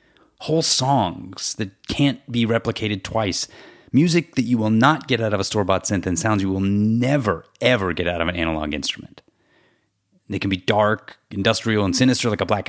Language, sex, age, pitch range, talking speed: English, male, 30-49, 95-130 Hz, 190 wpm